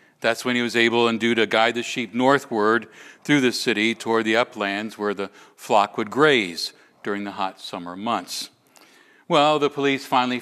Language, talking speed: English, 185 wpm